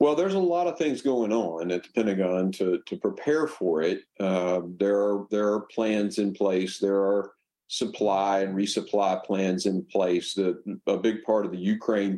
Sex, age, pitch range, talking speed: male, 50-69, 95-115 Hz, 190 wpm